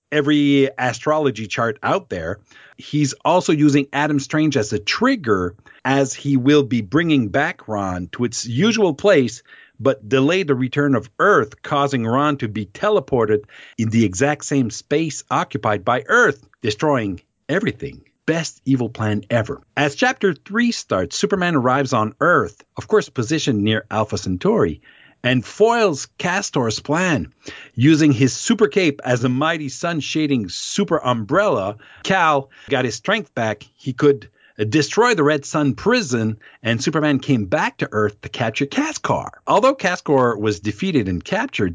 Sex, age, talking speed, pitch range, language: male, 50-69, 150 wpm, 110-155 Hz, English